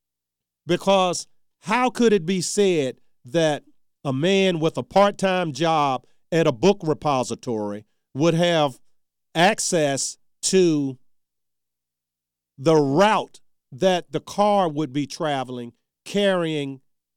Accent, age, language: American, 40-59, English